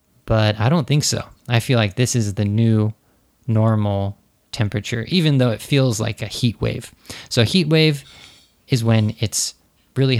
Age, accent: 20-39, American